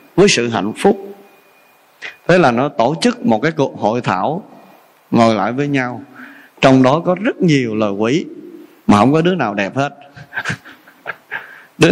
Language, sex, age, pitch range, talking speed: Vietnamese, male, 20-39, 140-195 Hz, 165 wpm